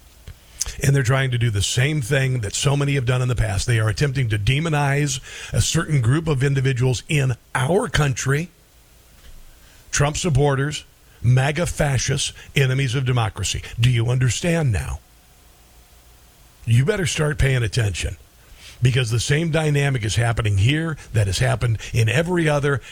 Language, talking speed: English, 150 wpm